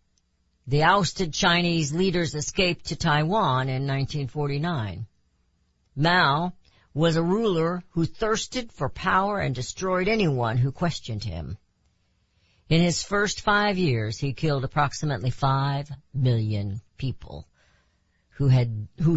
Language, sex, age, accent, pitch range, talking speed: English, female, 50-69, American, 105-150 Hz, 115 wpm